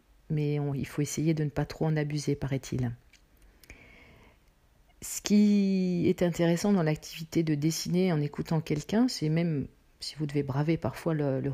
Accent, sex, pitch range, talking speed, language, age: French, female, 140-175 Hz, 165 wpm, English, 40-59